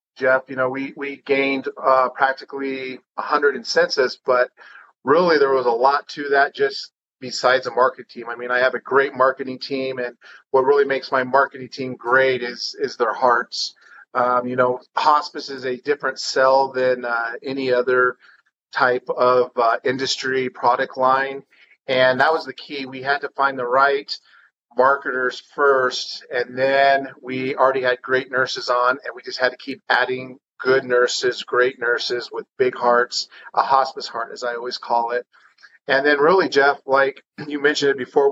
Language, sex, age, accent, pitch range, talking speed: English, male, 40-59, American, 125-145 Hz, 180 wpm